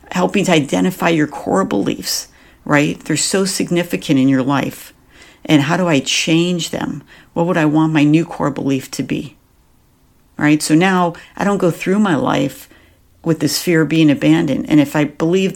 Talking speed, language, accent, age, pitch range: 185 wpm, English, American, 50-69, 140-175 Hz